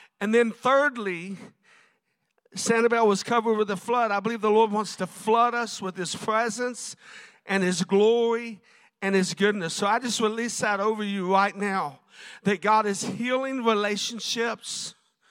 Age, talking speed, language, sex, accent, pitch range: 50-69, 155 wpm, English, male, American, 195-230 Hz